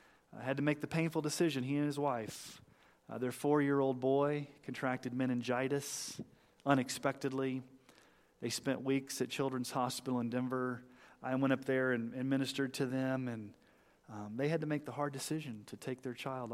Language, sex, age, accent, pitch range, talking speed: English, male, 40-59, American, 115-140 Hz, 175 wpm